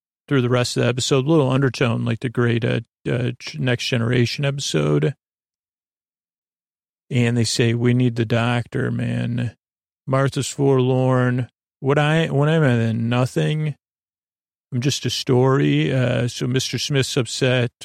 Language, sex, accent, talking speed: English, male, American, 145 wpm